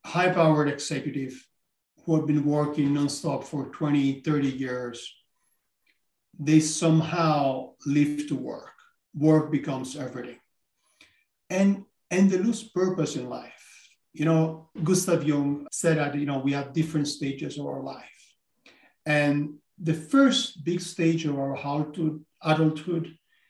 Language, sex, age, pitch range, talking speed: English, male, 50-69, 145-185 Hz, 125 wpm